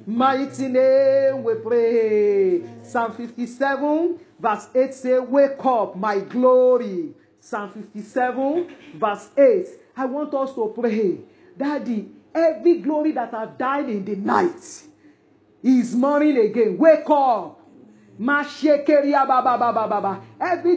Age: 40-59